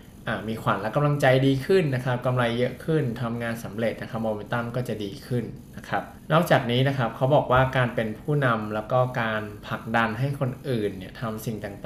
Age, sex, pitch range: 20-39, male, 110-130 Hz